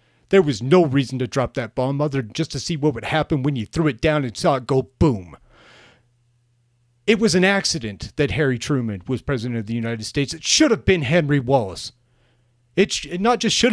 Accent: American